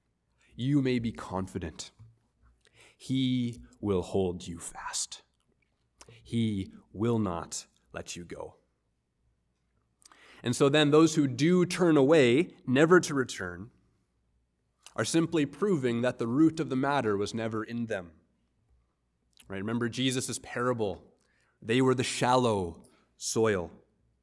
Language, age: English, 30-49